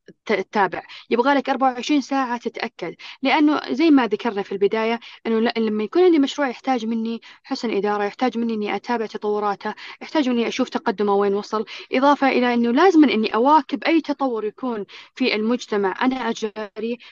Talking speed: 160 wpm